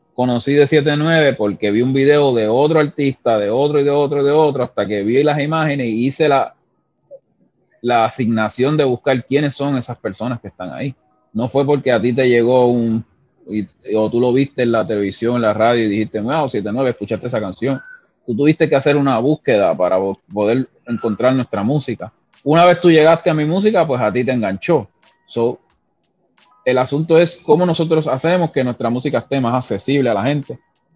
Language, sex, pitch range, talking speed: Spanish, male, 110-145 Hz, 200 wpm